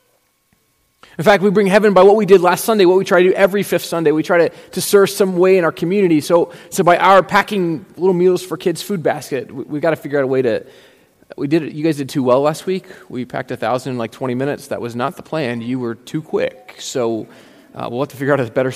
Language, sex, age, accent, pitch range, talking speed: English, male, 20-39, American, 135-185 Hz, 265 wpm